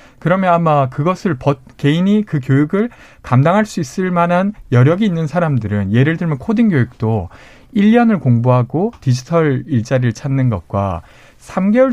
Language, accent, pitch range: Korean, native, 125-180 Hz